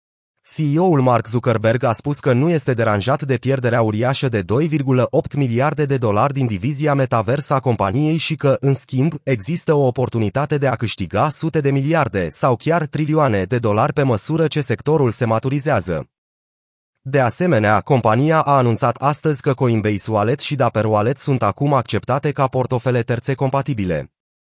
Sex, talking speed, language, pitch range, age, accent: male, 155 wpm, Romanian, 110-145 Hz, 30-49, native